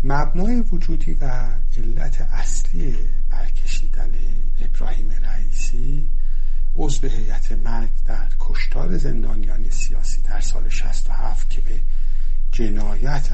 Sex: male